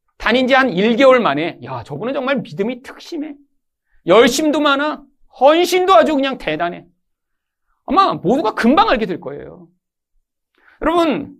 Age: 40-59